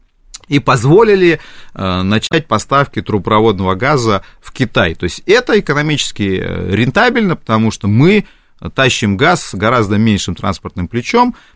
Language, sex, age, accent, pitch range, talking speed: Russian, male, 30-49, native, 100-135 Hz, 120 wpm